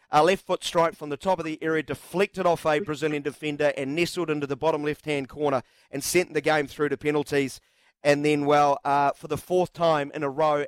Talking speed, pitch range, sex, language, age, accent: 225 wpm, 140-160 Hz, male, English, 40-59, Australian